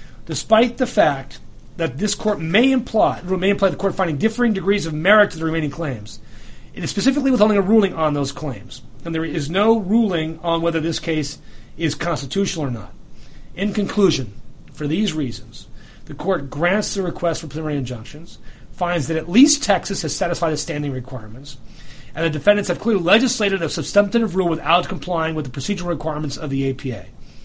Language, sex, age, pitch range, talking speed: English, male, 40-59, 135-195 Hz, 180 wpm